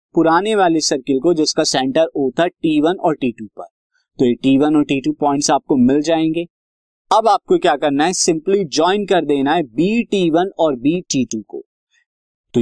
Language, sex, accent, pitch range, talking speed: Hindi, male, native, 140-205 Hz, 170 wpm